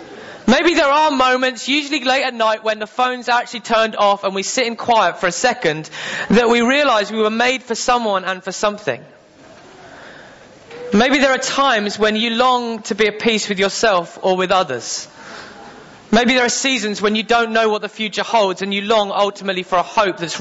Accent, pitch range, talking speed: British, 185-245 Hz, 205 wpm